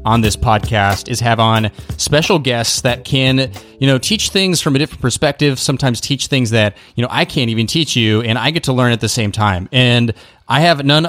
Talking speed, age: 225 wpm, 30-49